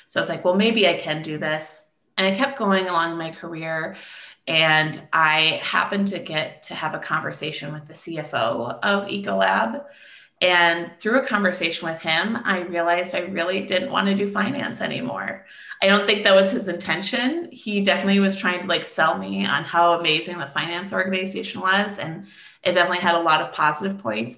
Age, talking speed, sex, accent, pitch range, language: 30-49, 190 wpm, female, American, 155-190 Hz, English